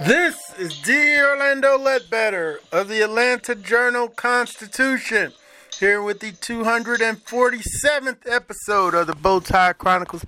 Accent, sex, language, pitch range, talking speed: American, male, English, 185-250 Hz, 105 wpm